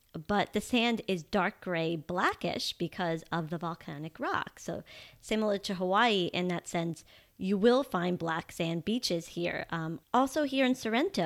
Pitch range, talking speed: 170-230 Hz, 165 wpm